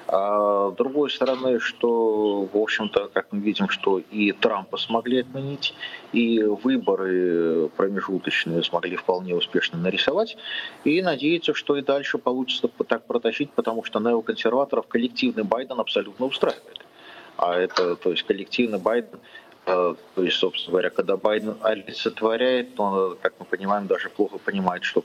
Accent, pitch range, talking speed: native, 105-150 Hz, 145 wpm